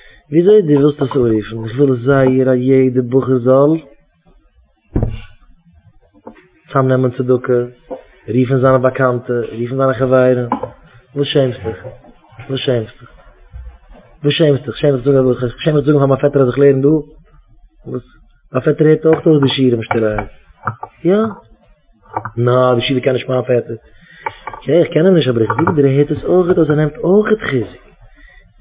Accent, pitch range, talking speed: Dutch, 120-160 Hz, 145 wpm